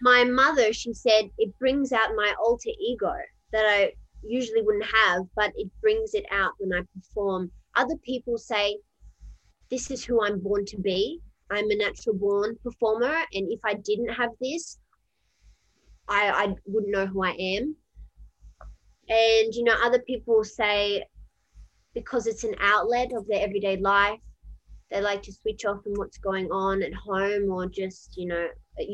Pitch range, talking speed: 200-235 Hz, 170 wpm